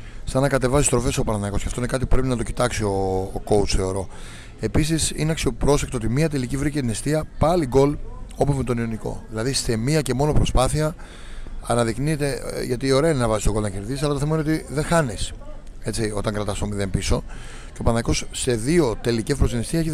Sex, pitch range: male, 105-140 Hz